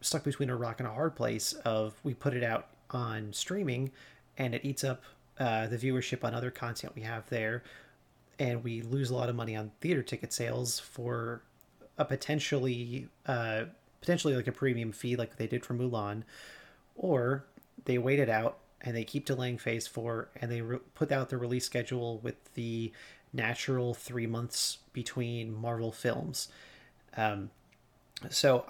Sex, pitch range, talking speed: male, 115-135 Hz, 170 wpm